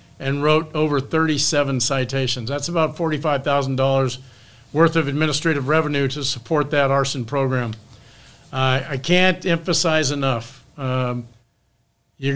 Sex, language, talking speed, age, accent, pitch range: male, English, 115 wpm, 50-69, American, 135-165 Hz